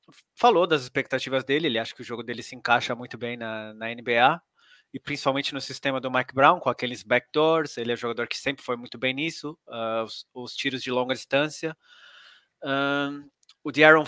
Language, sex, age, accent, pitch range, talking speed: Portuguese, male, 20-39, Brazilian, 120-140 Hz, 200 wpm